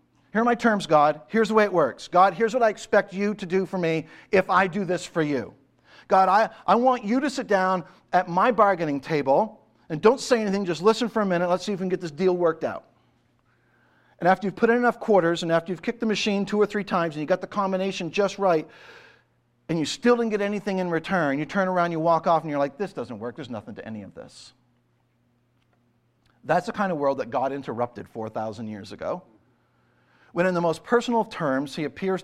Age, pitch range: 50-69, 140-200 Hz